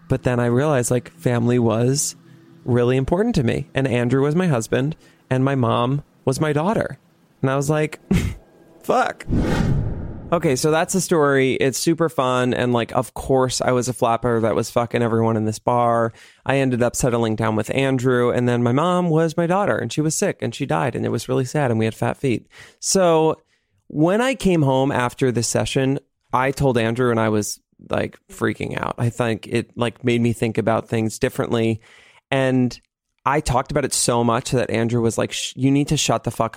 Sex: male